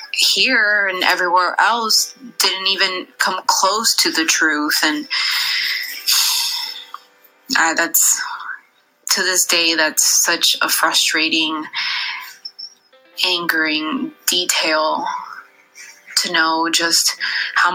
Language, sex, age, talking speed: English, female, 20-39, 90 wpm